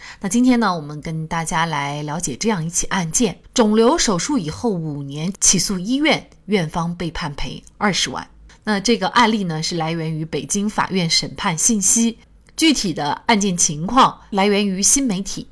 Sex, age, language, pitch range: female, 30-49, Chinese, 165-230 Hz